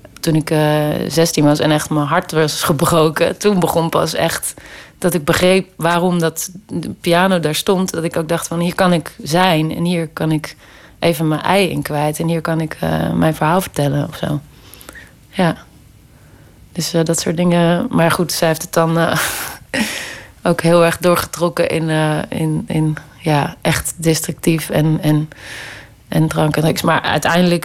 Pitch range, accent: 155-170 Hz, Dutch